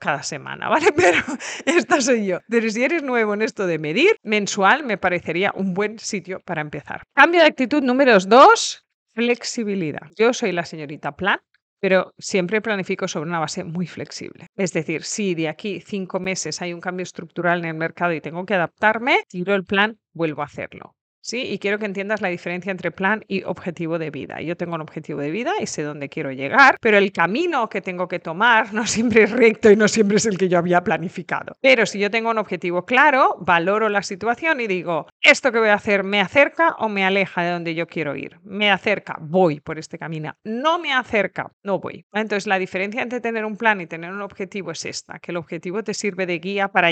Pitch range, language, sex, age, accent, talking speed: 175-220 Hz, Spanish, female, 40-59, Spanish, 215 wpm